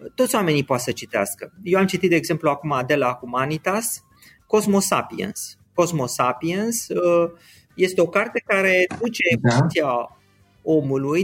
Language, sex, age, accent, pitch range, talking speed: Romanian, male, 30-49, native, 135-195 Hz, 140 wpm